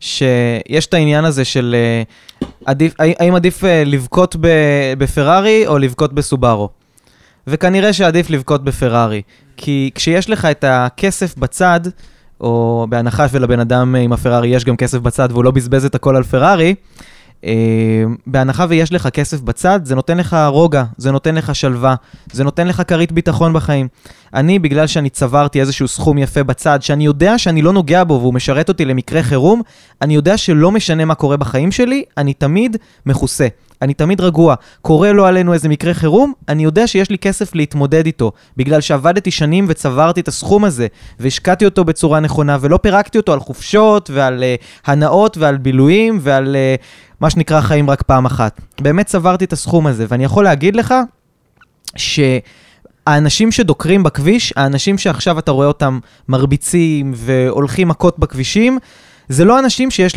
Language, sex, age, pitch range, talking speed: Hebrew, male, 20-39, 130-175 Hz, 160 wpm